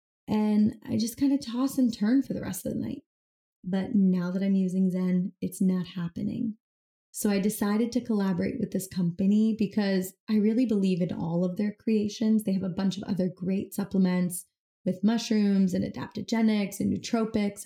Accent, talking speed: American, 185 wpm